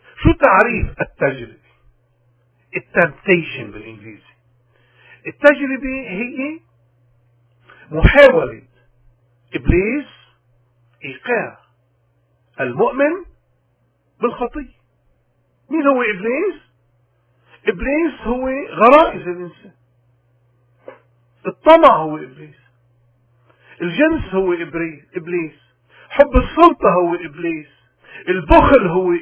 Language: Arabic